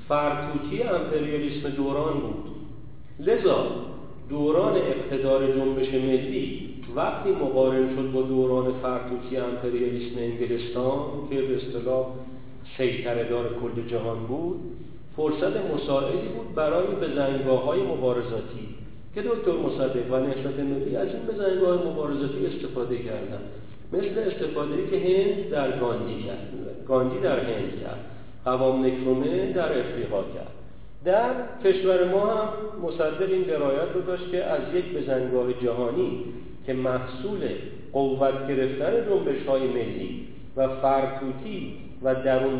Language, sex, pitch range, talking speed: Persian, male, 125-170 Hz, 115 wpm